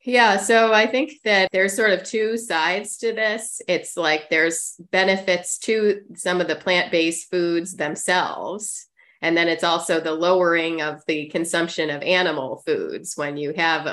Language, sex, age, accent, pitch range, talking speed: English, female, 30-49, American, 155-180 Hz, 165 wpm